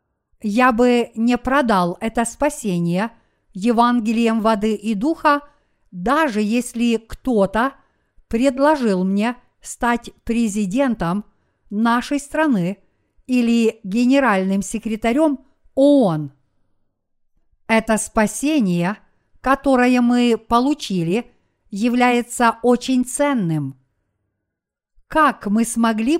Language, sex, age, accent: Russian, female, 50-69, native